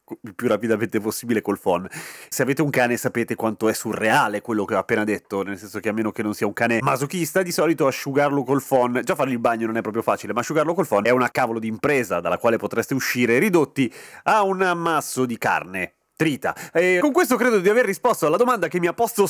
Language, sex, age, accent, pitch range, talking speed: Italian, male, 30-49, native, 120-175 Hz, 235 wpm